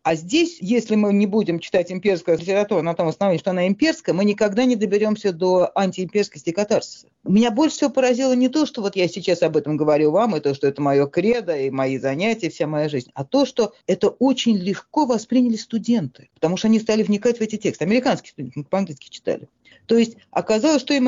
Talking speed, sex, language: 210 wpm, female, Russian